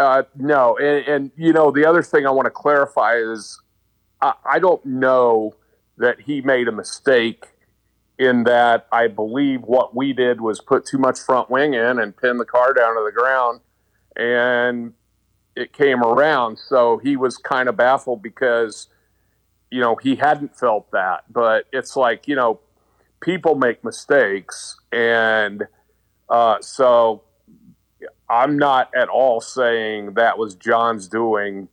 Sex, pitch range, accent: male, 105-125 Hz, American